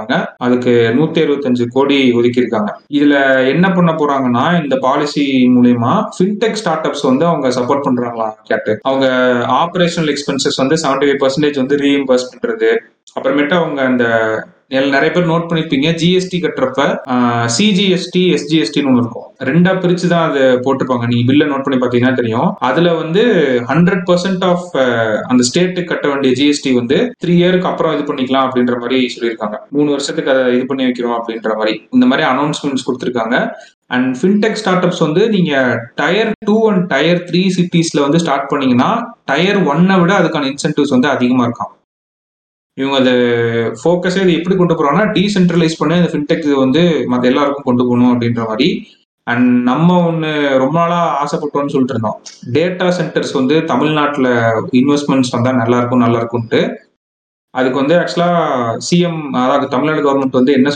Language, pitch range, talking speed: Tamil, 125-170 Hz, 140 wpm